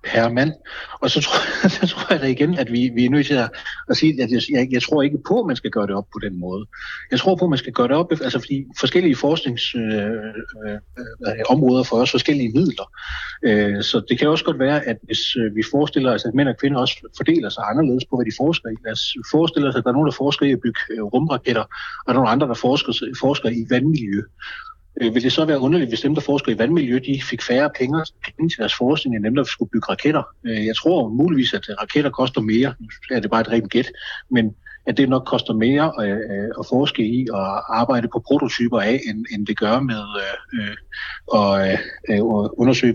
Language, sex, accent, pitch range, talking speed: Danish, male, native, 110-145 Hz, 220 wpm